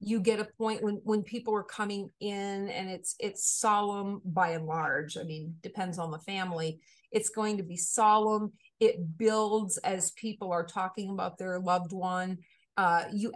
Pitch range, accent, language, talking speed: 180-220 Hz, American, English, 180 wpm